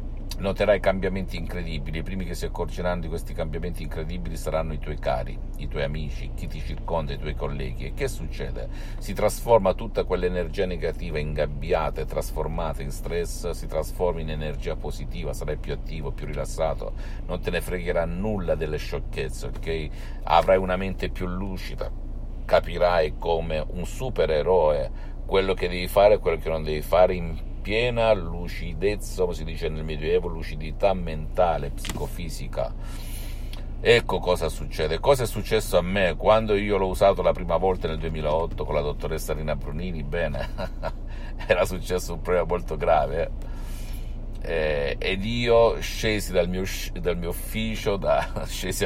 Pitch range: 75-95 Hz